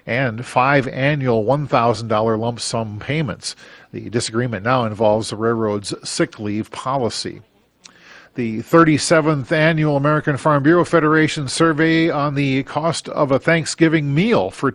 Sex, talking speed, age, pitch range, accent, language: male, 130 wpm, 50-69, 115-155 Hz, American, English